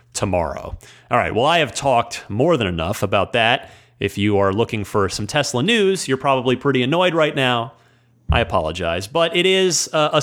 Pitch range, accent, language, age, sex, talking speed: 120-165 Hz, American, English, 30-49, male, 195 wpm